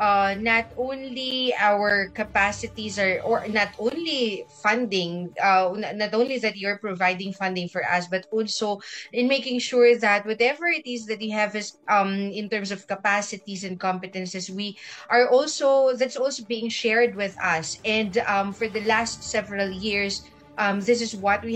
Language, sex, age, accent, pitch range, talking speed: Filipino, female, 20-39, native, 190-230 Hz, 170 wpm